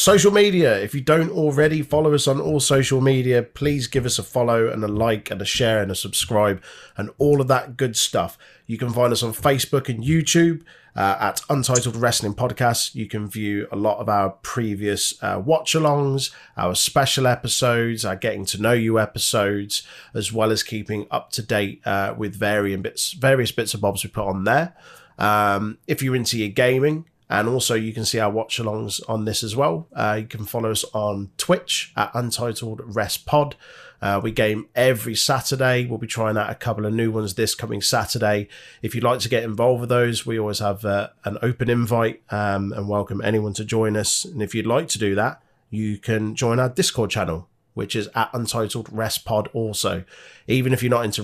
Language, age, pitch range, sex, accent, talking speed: English, 30-49, 105-125 Hz, male, British, 200 wpm